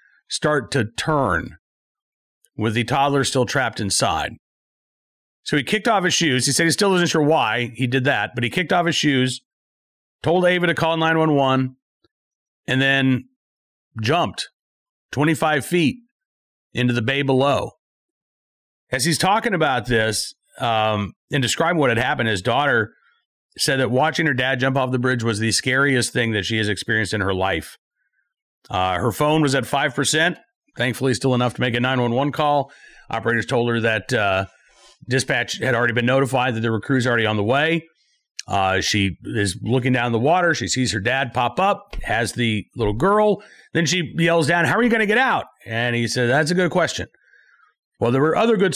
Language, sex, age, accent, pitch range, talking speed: English, male, 40-59, American, 120-160 Hz, 185 wpm